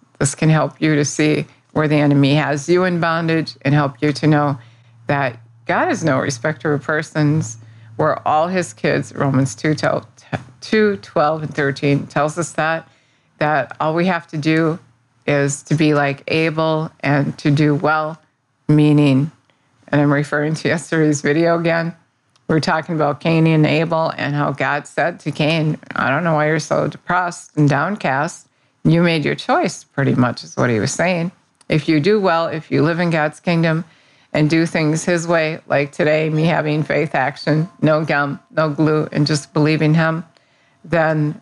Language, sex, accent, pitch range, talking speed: English, female, American, 145-165 Hz, 175 wpm